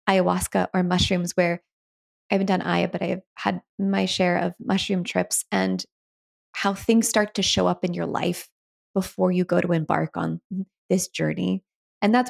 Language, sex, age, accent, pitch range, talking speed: English, female, 20-39, American, 175-215 Hz, 175 wpm